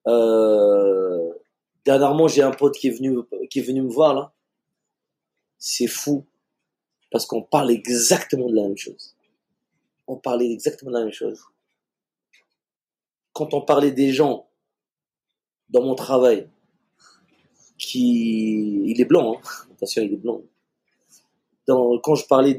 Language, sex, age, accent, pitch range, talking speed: French, male, 30-49, French, 115-140 Hz, 140 wpm